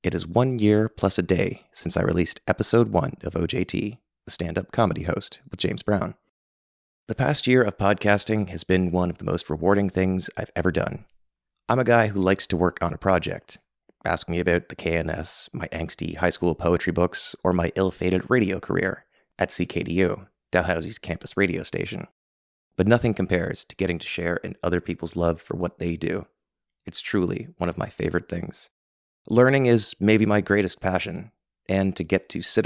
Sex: male